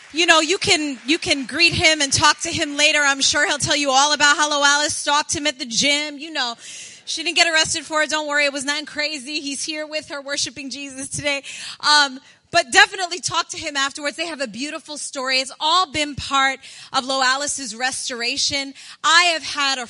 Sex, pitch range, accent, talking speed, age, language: female, 280-330 Hz, American, 220 wpm, 30-49, English